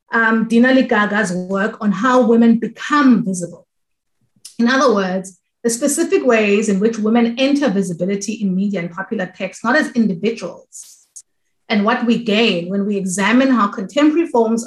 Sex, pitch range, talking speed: female, 195-250 Hz, 150 wpm